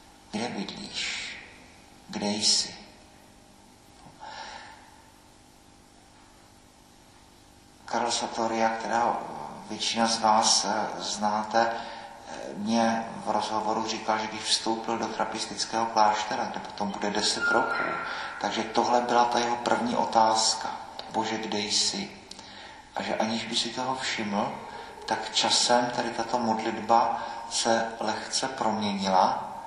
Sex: male